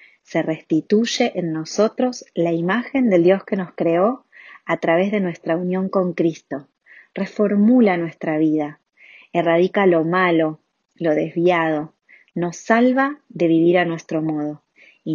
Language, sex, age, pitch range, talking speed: Spanish, female, 20-39, 160-200 Hz, 135 wpm